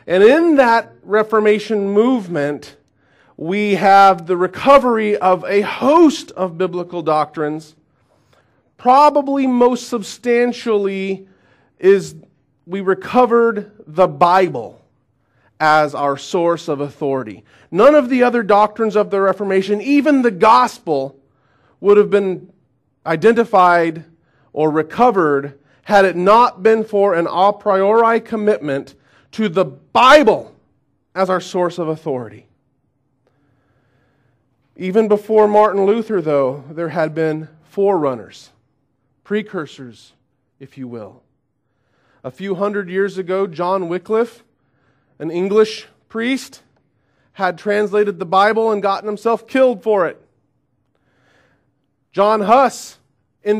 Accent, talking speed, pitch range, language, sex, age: American, 110 wpm, 140-215 Hz, English, male, 40-59